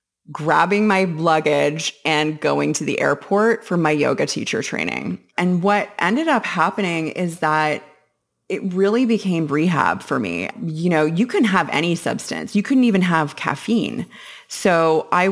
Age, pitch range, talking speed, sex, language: 20-39, 150-170 Hz, 155 wpm, female, English